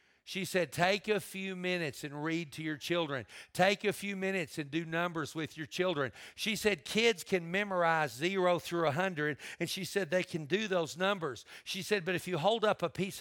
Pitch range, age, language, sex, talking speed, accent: 165-200 Hz, 50-69, English, male, 210 wpm, American